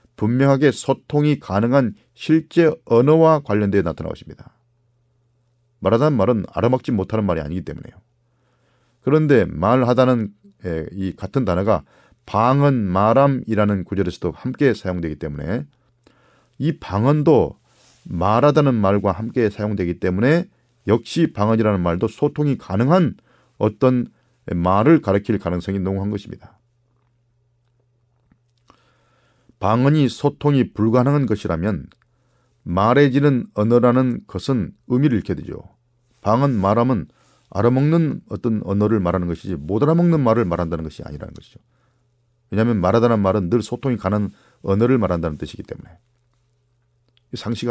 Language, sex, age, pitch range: Korean, male, 40-59, 105-130 Hz